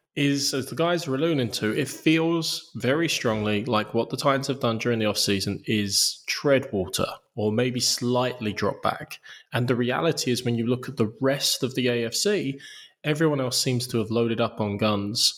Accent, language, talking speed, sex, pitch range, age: British, English, 195 wpm, male, 105-135 Hz, 20-39